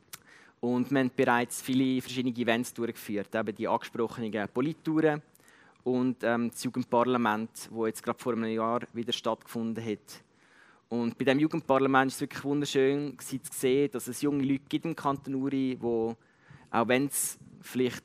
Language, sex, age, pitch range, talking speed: German, male, 20-39, 120-135 Hz, 150 wpm